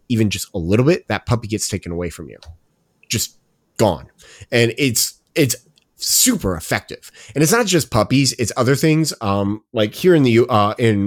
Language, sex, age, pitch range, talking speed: English, male, 30-49, 90-125 Hz, 185 wpm